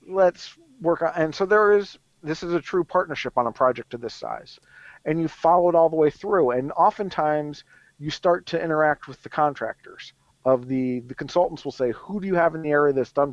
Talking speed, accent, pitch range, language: 225 wpm, American, 130-165 Hz, English